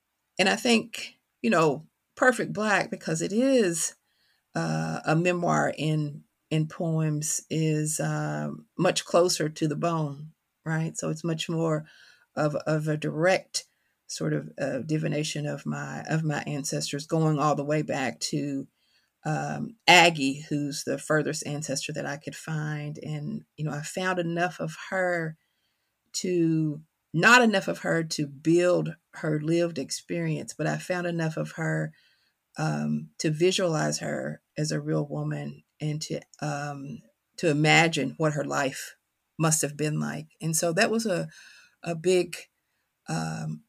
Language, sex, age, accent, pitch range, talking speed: English, female, 40-59, American, 145-170 Hz, 150 wpm